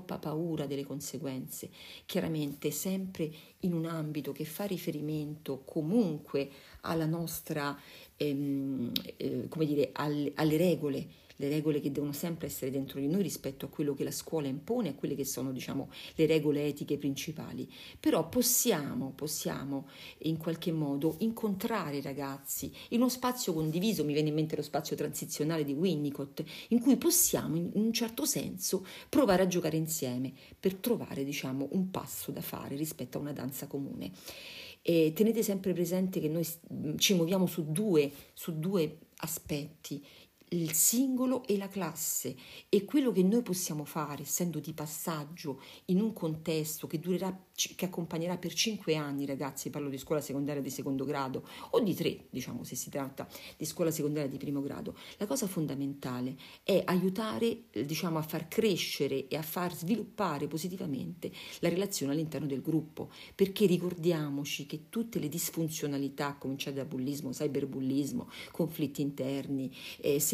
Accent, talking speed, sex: native, 155 wpm, female